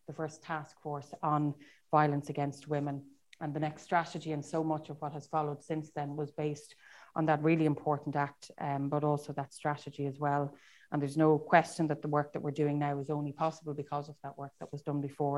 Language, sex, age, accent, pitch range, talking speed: English, female, 30-49, Irish, 145-155 Hz, 220 wpm